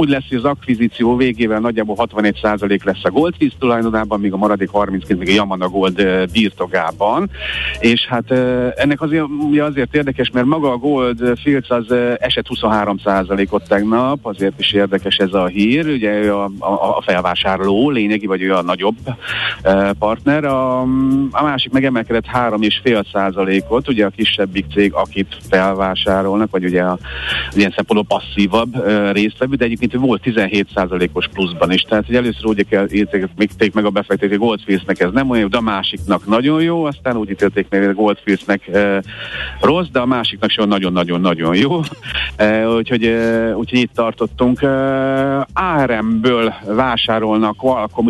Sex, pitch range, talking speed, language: male, 100-125 Hz, 150 wpm, Hungarian